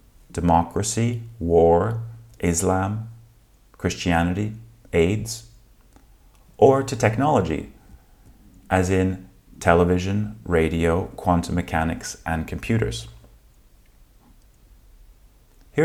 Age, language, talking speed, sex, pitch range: 30-49, English, 65 wpm, male, 85-115 Hz